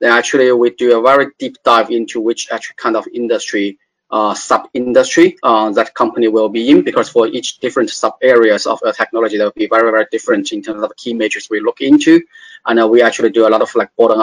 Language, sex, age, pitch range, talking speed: English, male, 20-39, 110-175 Hz, 235 wpm